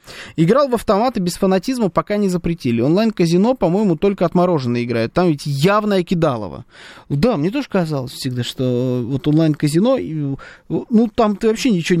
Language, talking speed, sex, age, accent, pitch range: Russian, 150 wpm, male, 20-39, native, 130-185 Hz